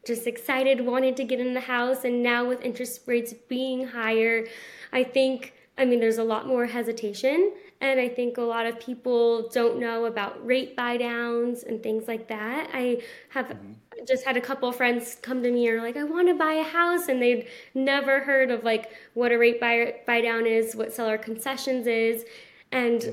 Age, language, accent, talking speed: 10-29, English, American, 200 wpm